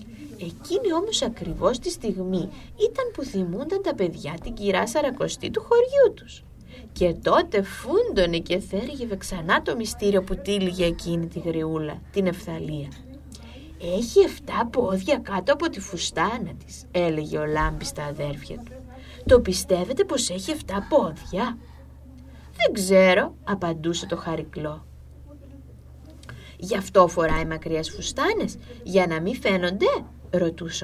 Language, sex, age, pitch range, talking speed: Greek, female, 20-39, 150-205 Hz, 145 wpm